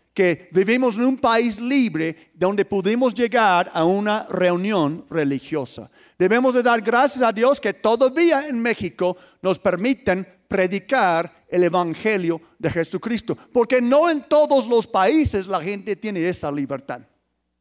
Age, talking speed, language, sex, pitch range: 50-69, 140 wpm, Spanish, male, 180-275 Hz